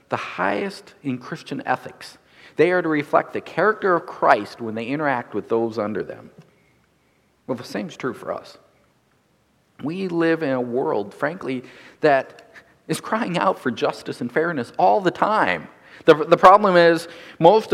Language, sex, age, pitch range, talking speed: English, male, 50-69, 120-185 Hz, 165 wpm